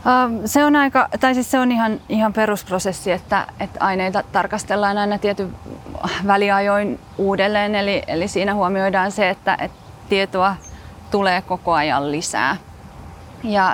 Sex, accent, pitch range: female, native, 185-210 Hz